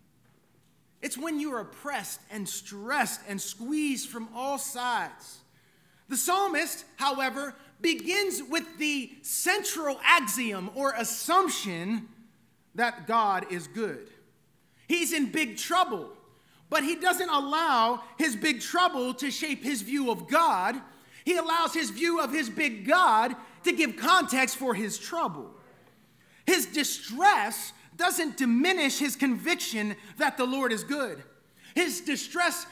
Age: 30-49